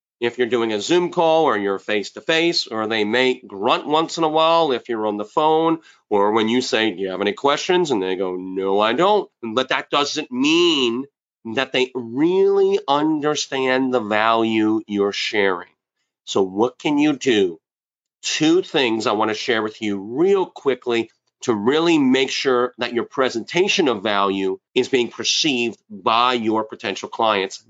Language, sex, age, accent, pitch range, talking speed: English, male, 40-59, American, 110-165 Hz, 170 wpm